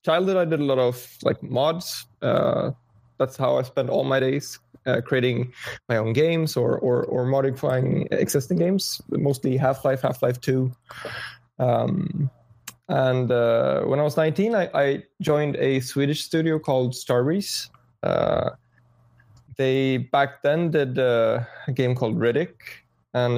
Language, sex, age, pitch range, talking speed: English, male, 20-39, 120-140 Hz, 145 wpm